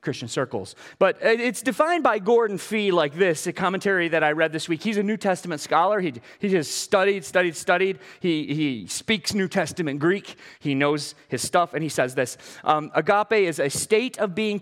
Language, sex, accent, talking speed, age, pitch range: English, male, American, 200 wpm, 30-49, 155-210 Hz